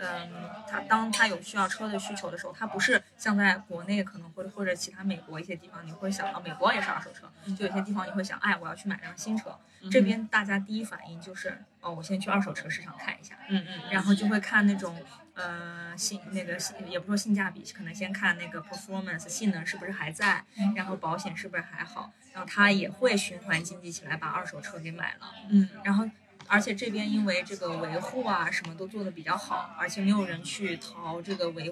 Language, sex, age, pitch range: Chinese, female, 20-39, 175-205 Hz